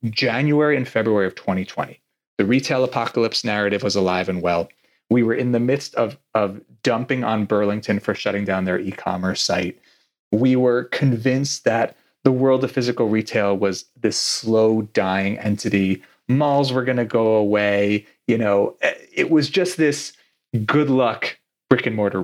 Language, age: English, 30-49